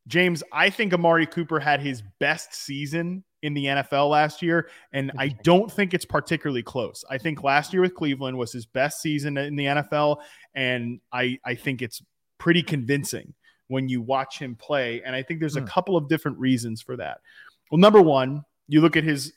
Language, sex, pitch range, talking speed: English, male, 130-160 Hz, 200 wpm